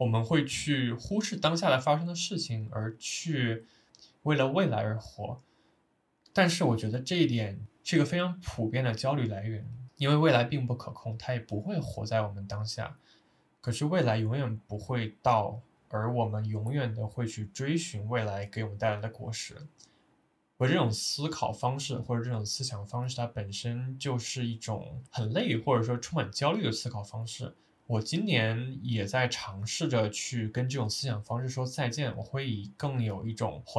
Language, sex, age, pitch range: Chinese, male, 10-29, 110-135 Hz